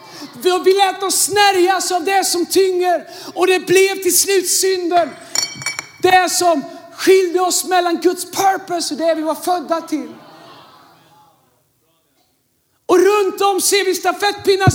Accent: native